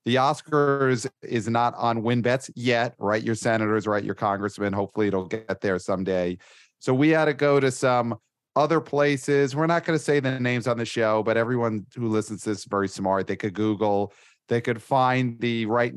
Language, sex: English, male